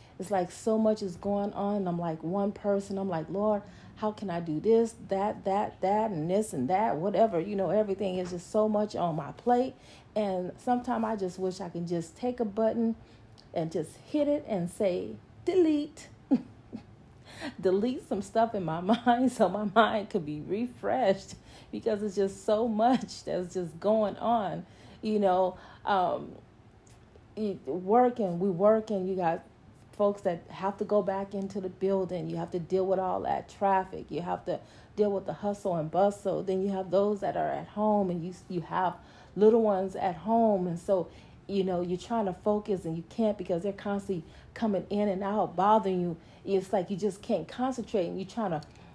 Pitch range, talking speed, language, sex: 185-220 Hz, 190 wpm, English, female